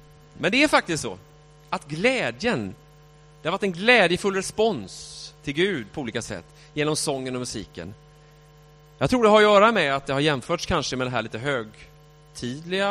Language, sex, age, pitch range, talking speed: English, male, 30-49, 125-165 Hz, 175 wpm